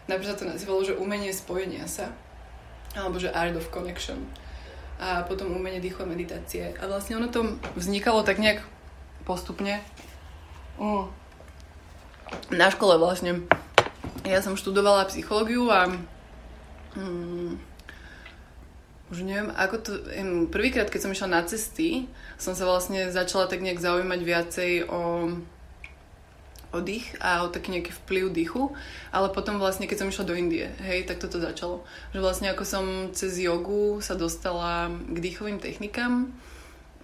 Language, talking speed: Slovak, 140 wpm